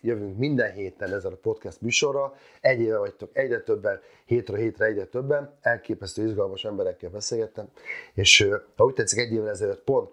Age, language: 30-49, Hungarian